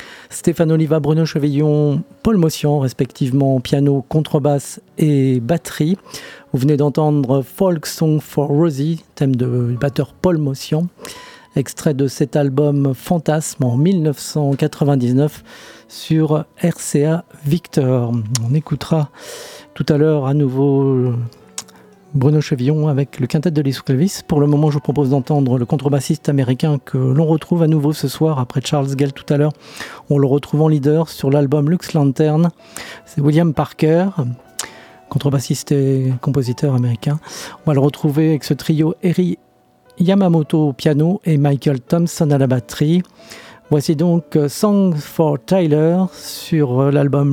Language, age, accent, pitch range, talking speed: French, 40-59, French, 140-160 Hz, 140 wpm